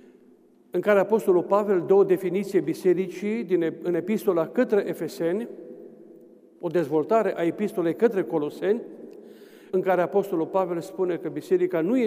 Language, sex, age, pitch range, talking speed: Romanian, male, 50-69, 180-240 Hz, 140 wpm